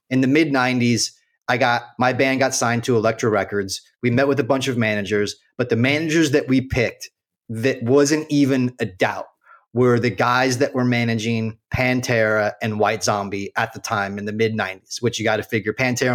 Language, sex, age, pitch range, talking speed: English, male, 30-49, 115-145 Hz, 200 wpm